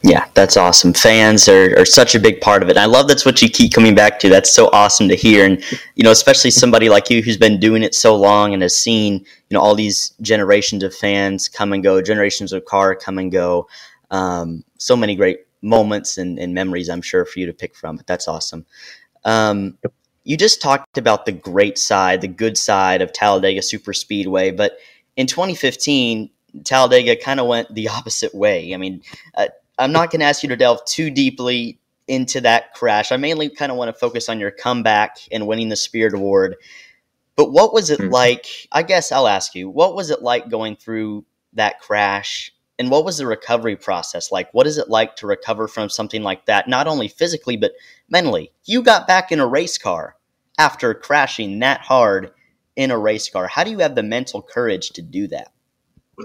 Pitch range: 100-125 Hz